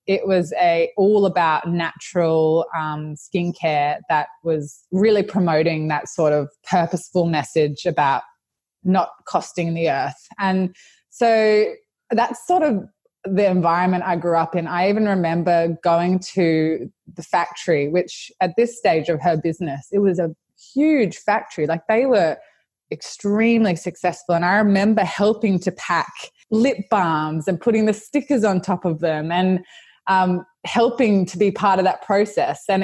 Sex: female